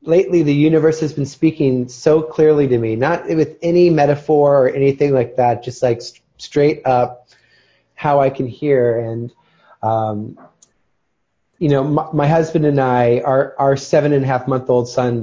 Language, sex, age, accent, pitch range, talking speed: English, male, 30-49, American, 120-145 Hz, 160 wpm